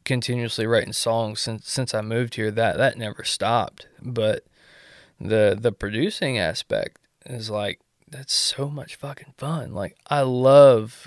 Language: English